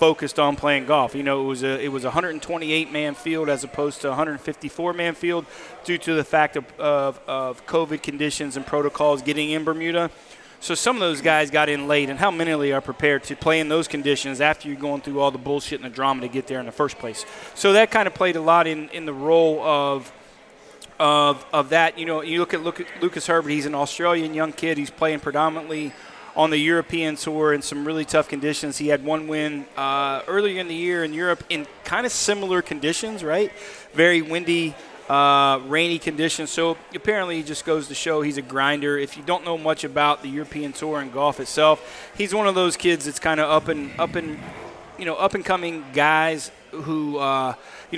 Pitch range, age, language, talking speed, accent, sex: 145-165 Hz, 30-49, English, 215 wpm, American, male